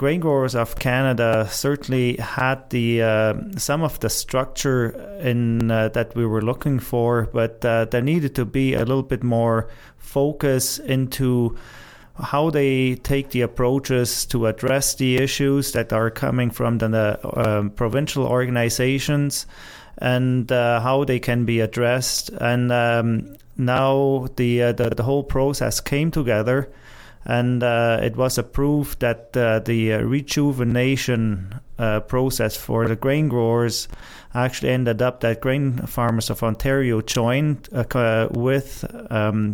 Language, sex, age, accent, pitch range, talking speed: English, male, 30-49, German, 115-135 Hz, 145 wpm